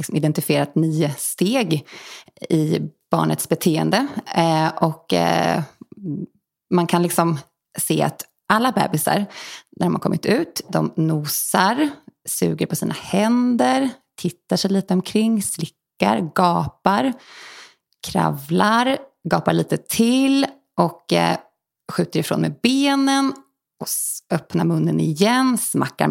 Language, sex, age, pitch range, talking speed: English, female, 20-39, 165-245 Hz, 100 wpm